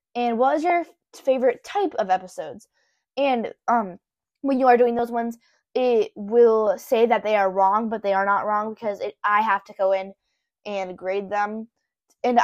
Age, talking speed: 10-29, 190 wpm